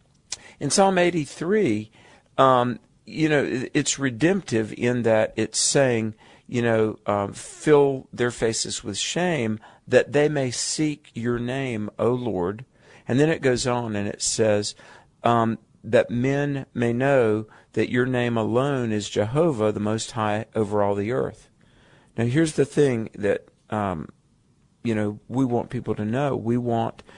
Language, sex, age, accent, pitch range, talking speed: English, male, 50-69, American, 110-135 Hz, 150 wpm